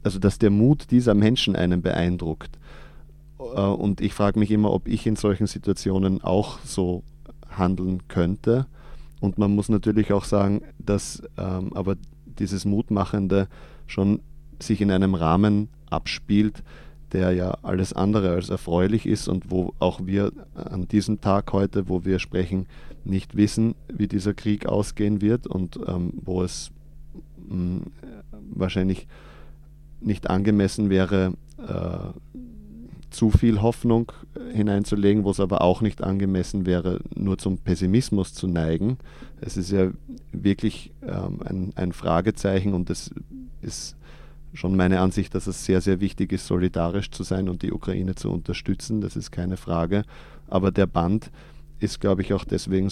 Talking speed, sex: 145 wpm, male